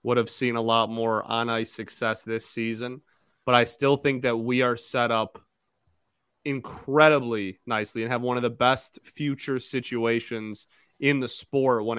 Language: English